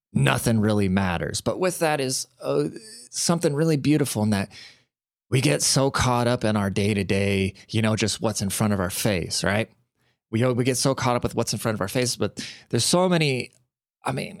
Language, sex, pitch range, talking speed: English, male, 110-135 Hz, 215 wpm